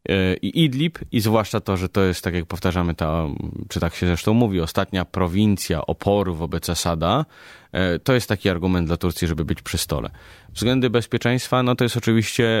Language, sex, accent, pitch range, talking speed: Polish, male, native, 90-115 Hz, 180 wpm